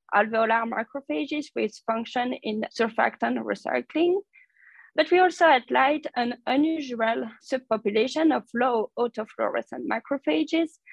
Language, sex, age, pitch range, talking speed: English, female, 20-39, 220-285 Hz, 105 wpm